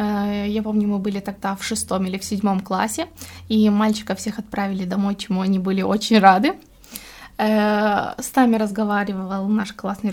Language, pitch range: Romanian, 205-250 Hz